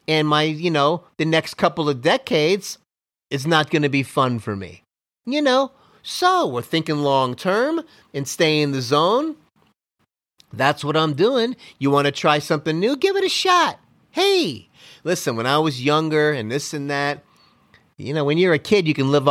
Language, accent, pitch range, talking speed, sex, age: English, American, 120-160 Hz, 195 wpm, male, 30-49